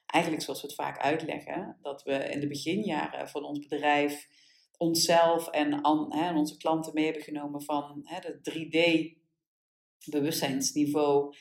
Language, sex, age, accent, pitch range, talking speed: Dutch, female, 40-59, Dutch, 145-165 Hz, 125 wpm